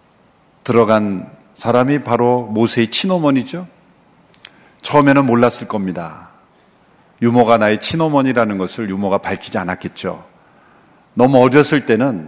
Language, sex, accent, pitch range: Korean, male, native, 105-140 Hz